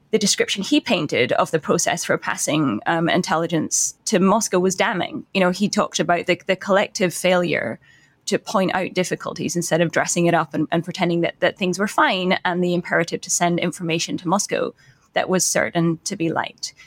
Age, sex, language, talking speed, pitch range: 10-29, female, English, 195 wpm, 175-205 Hz